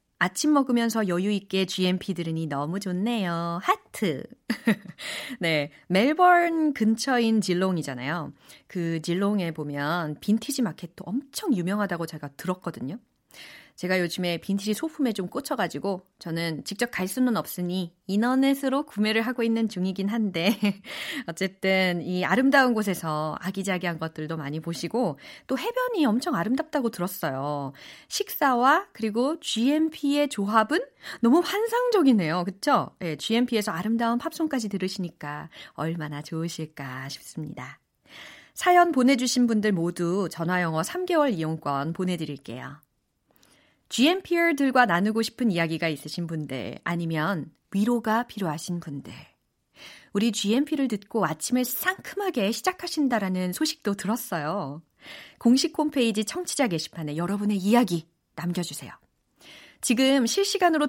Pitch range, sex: 170-255 Hz, female